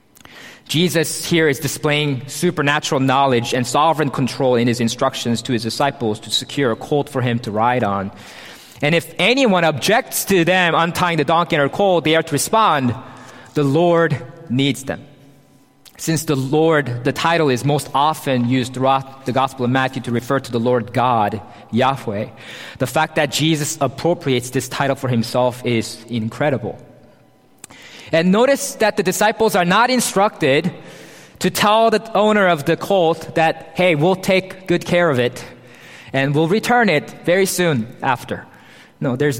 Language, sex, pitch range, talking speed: English, male, 125-165 Hz, 165 wpm